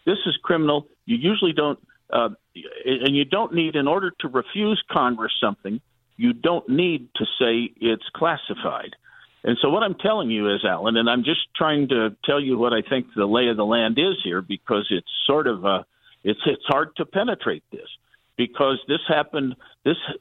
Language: English